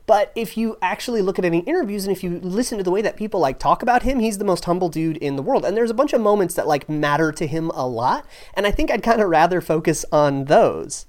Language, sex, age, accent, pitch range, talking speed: English, male, 30-49, American, 145-215 Hz, 280 wpm